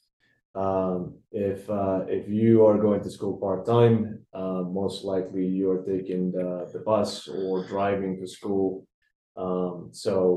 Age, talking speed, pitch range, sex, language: 20-39, 145 wpm, 95-105 Hz, male, English